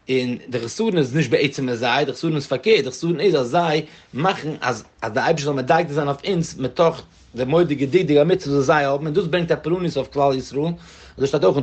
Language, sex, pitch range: English, male, 130-170 Hz